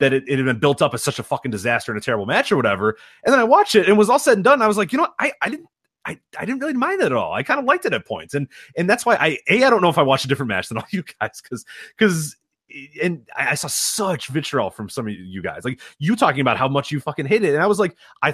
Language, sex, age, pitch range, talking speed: English, male, 30-49, 125-185 Hz, 325 wpm